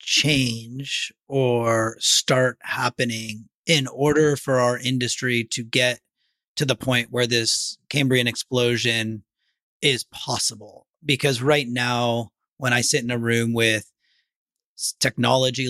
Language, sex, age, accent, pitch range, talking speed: English, male, 30-49, American, 115-130 Hz, 120 wpm